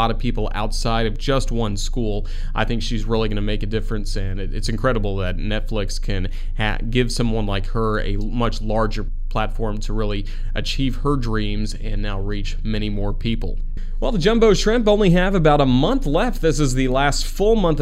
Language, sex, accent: English, male, American